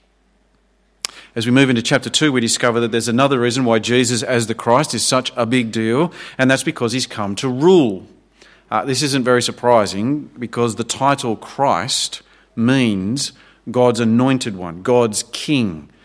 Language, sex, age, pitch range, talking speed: English, male, 40-59, 110-130 Hz, 165 wpm